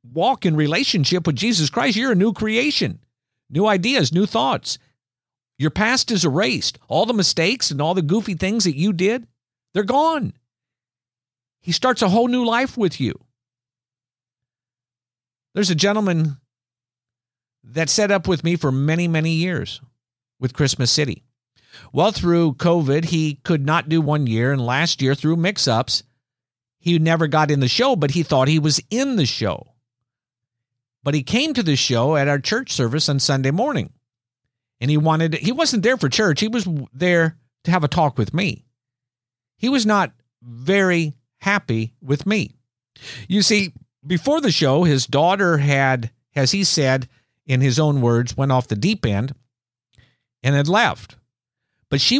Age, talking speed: 50-69, 165 wpm